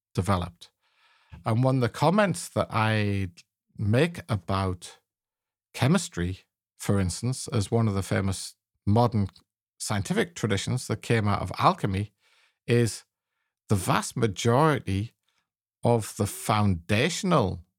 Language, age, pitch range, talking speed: English, 50-69, 100-120 Hz, 110 wpm